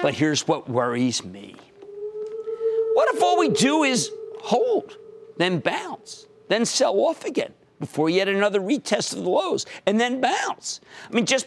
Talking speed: 160 wpm